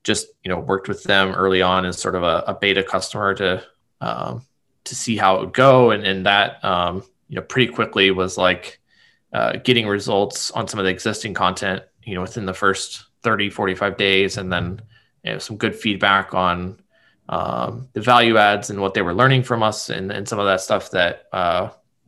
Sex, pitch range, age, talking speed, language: male, 95-115 Hz, 20-39, 210 wpm, English